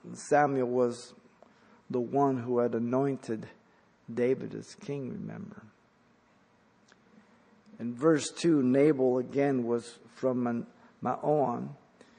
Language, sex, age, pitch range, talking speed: English, male, 50-69, 130-170 Hz, 95 wpm